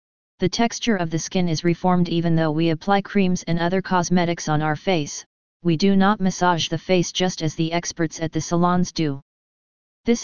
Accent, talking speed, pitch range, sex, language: American, 195 wpm, 165-190 Hz, female, English